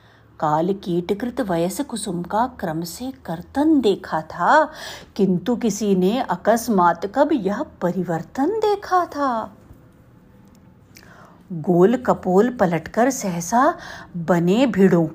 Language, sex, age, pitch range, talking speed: Hindi, female, 50-69, 180-265 Hz, 90 wpm